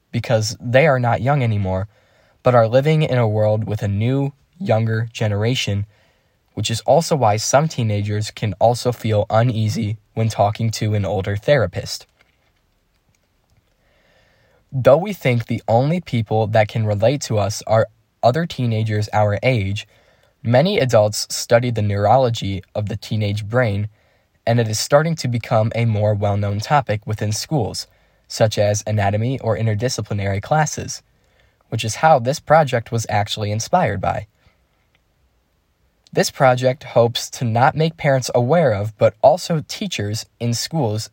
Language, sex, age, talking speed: English, male, 10-29, 145 wpm